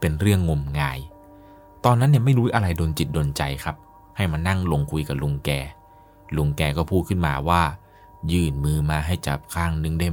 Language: Thai